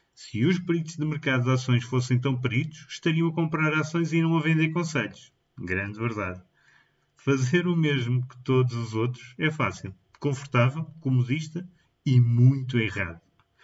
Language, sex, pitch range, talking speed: Portuguese, male, 115-150 Hz, 155 wpm